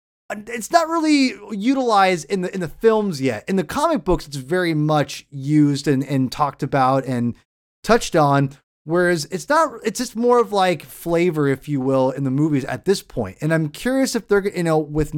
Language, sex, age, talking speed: English, male, 30-49, 200 wpm